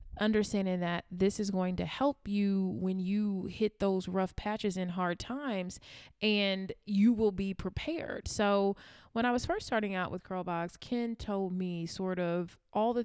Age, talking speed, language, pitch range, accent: 20-39, 175 wpm, English, 185-215 Hz, American